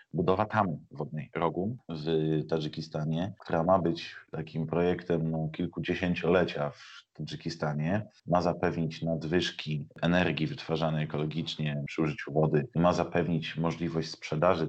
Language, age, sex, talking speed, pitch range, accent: Polish, 30-49, male, 110 wpm, 80-90 Hz, native